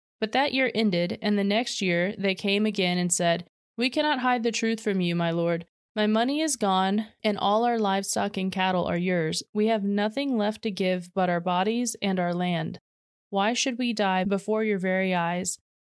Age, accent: 20-39, American